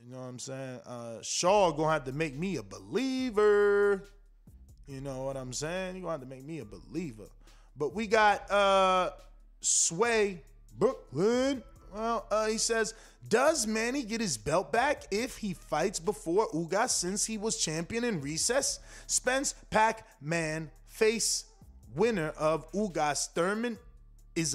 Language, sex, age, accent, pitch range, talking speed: English, male, 20-39, American, 155-225 Hz, 150 wpm